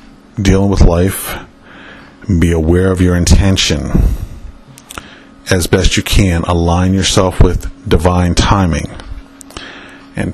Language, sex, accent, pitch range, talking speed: English, male, American, 85-95 Hz, 110 wpm